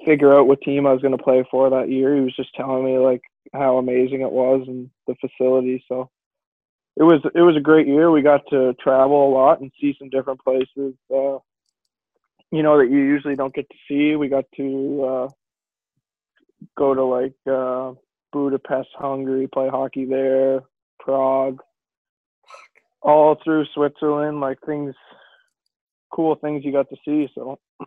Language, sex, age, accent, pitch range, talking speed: English, male, 20-39, American, 130-140 Hz, 170 wpm